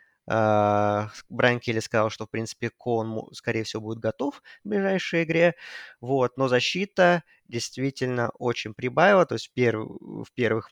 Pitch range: 120-145 Hz